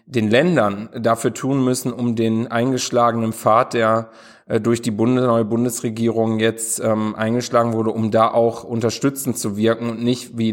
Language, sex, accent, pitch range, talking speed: German, male, German, 110-120 Hz, 160 wpm